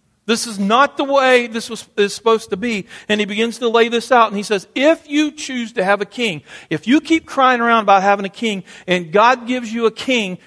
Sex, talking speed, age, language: male, 240 wpm, 50-69, English